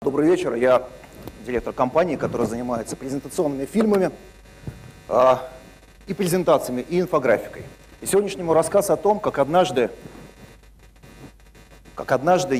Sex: male